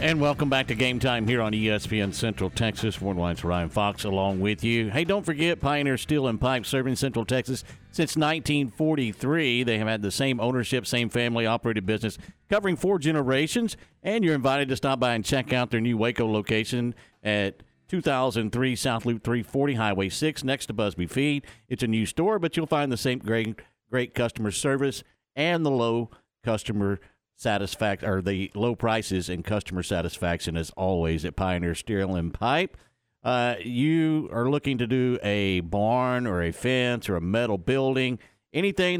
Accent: American